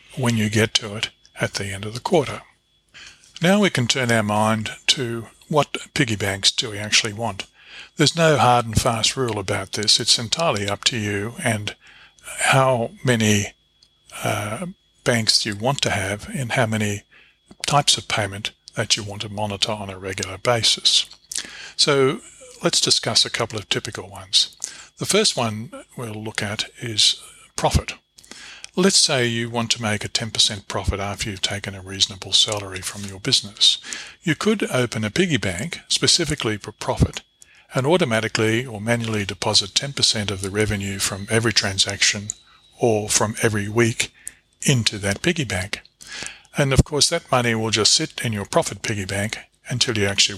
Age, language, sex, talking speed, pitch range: 50-69, English, male, 170 wpm, 105-125 Hz